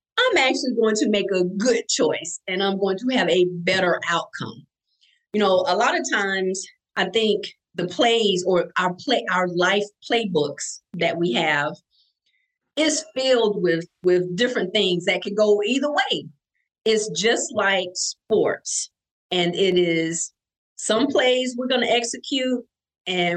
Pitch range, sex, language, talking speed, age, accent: 180-240 Hz, female, English, 155 wpm, 40-59, American